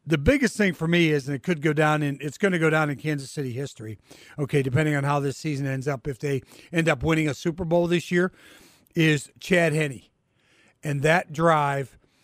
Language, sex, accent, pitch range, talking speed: English, male, American, 140-180 Hz, 220 wpm